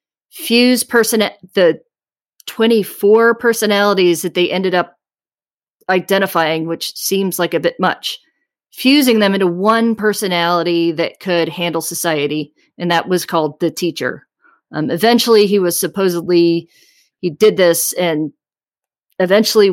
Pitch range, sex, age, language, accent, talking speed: 165-215 Hz, female, 30-49, English, American, 120 wpm